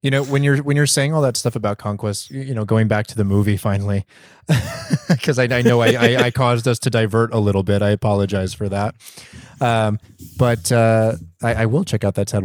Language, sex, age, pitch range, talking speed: English, male, 20-39, 100-120 Hz, 230 wpm